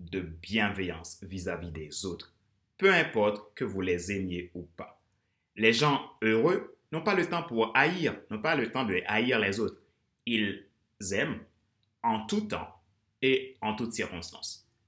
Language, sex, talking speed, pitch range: French, male, 155 wpm, 95-135 Hz